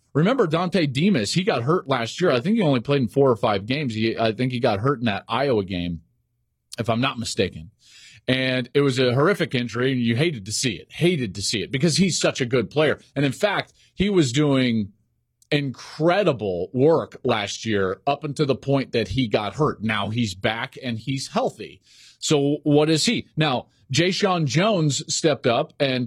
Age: 40-59